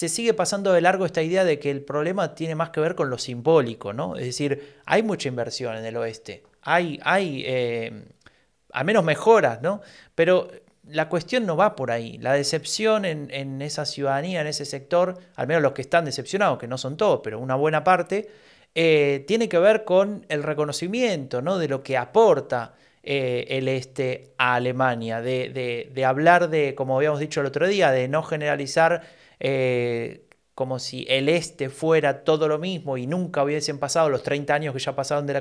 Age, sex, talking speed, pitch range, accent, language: 30-49, male, 195 wpm, 130-175 Hz, Argentinian, Spanish